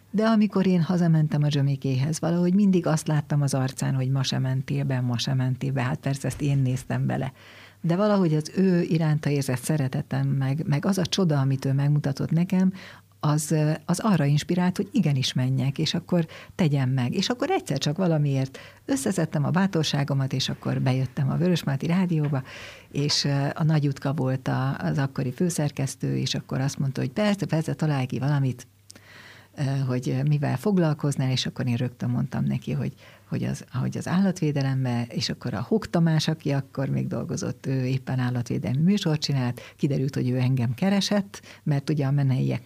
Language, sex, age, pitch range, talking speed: Hungarian, female, 60-79, 130-160 Hz, 165 wpm